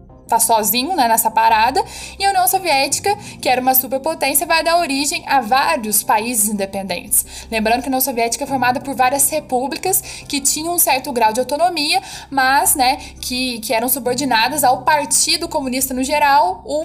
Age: 10-29